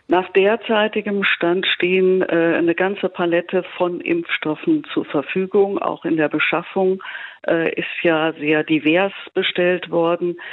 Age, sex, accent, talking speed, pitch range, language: 50-69, female, German, 130 wpm, 150-185 Hz, German